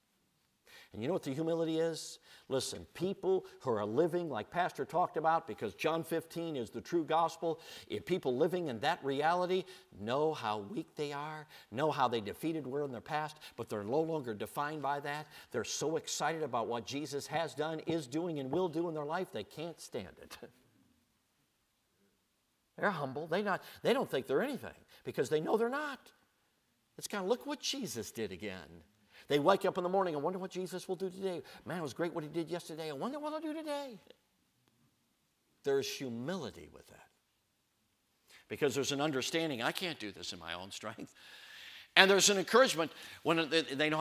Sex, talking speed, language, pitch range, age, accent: male, 190 wpm, English, 150-185 Hz, 50-69, American